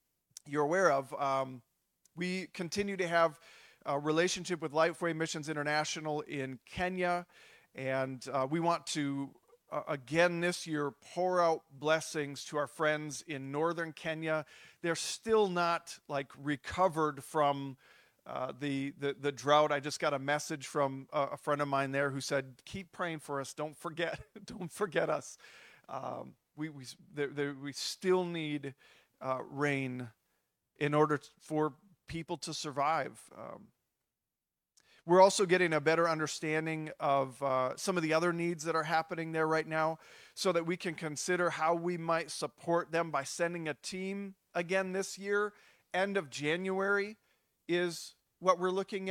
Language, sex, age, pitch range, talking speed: English, male, 40-59, 145-180 Hz, 160 wpm